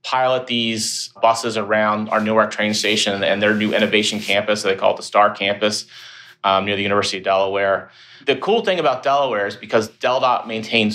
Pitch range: 100-120 Hz